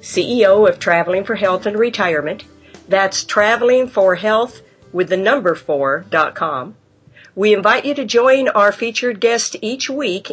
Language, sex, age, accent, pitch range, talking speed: English, female, 50-69, American, 170-225 Hz, 110 wpm